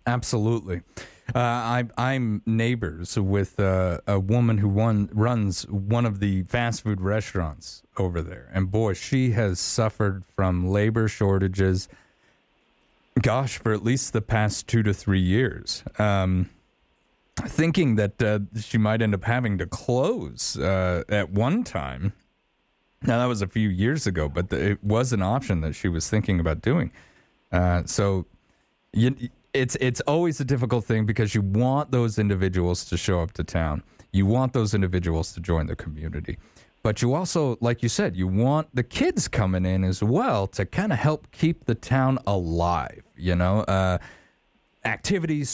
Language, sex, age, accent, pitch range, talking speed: English, male, 30-49, American, 95-120 Hz, 160 wpm